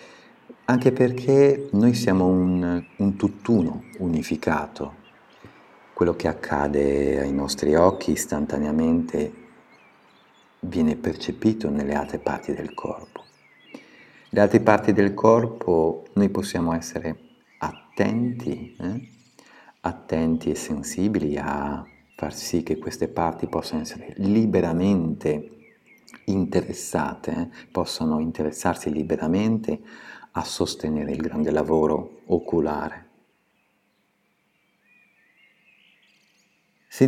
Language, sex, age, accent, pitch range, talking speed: Italian, male, 50-69, native, 80-105 Hz, 90 wpm